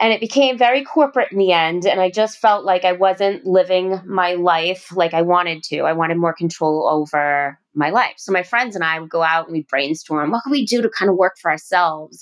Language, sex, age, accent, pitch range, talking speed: English, female, 30-49, American, 175-240 Hz, 245 wpm